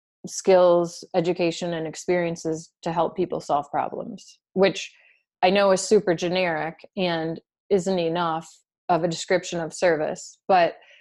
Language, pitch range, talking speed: English, 165-200 Hz, 130 wpm